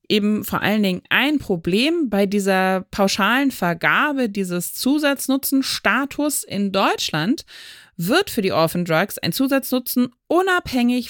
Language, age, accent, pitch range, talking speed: German, 30-49, German, 160-250 Hz, 115 wpm